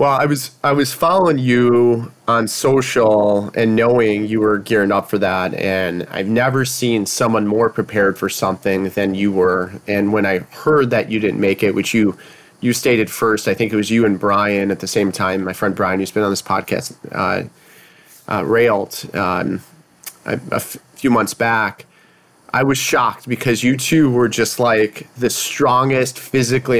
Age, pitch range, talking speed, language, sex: 30-49, 100-125 Hz, 190 wpm, English, male